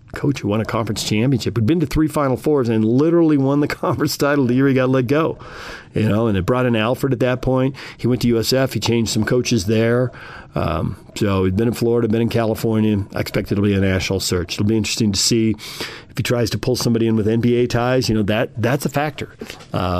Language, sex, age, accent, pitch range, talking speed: English, male, 40-59, American, 105-130 Hz, 245 wpm